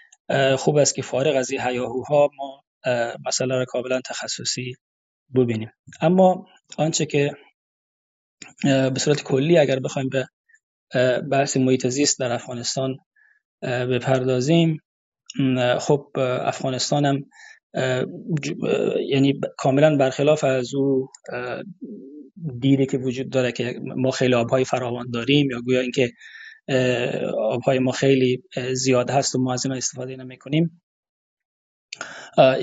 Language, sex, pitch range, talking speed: Persian, male, 125-140 Hz, 115 wpm